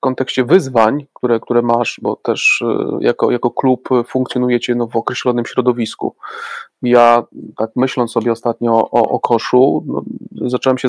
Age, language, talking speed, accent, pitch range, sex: 30-49, Polish, 140 wpm, native, 120-135 Hz, male